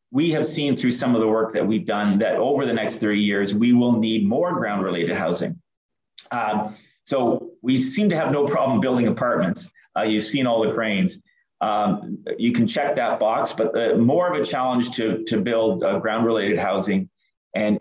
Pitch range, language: 100-125 Hz, English